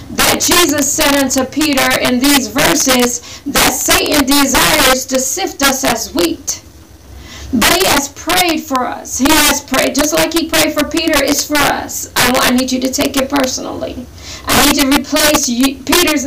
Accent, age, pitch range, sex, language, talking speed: American, 40-59, 245-310 Hz, female, English, 175 wpm